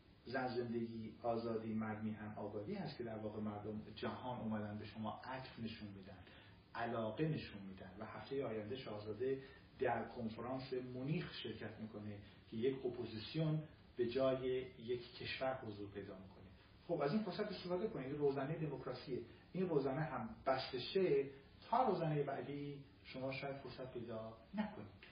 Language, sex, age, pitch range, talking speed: Persian, male, 40-59, 110-140 Hz, 150 wpm